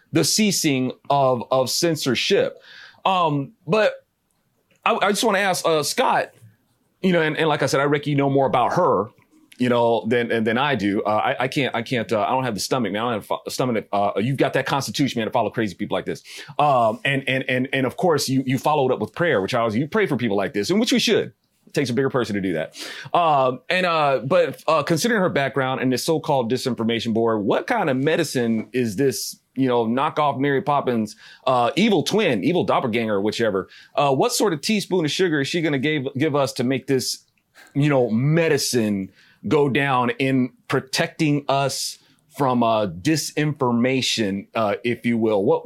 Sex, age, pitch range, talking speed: male, 30-49, 120-160 Hz, 220 wpm